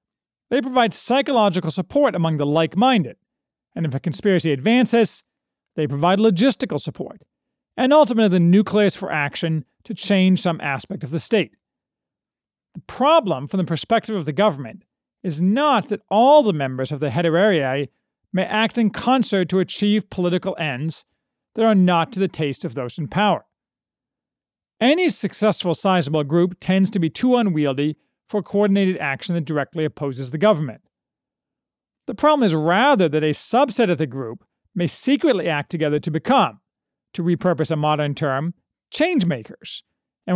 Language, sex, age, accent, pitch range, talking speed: English, male, 40-59, American, 160-220 Hz, 155 wpm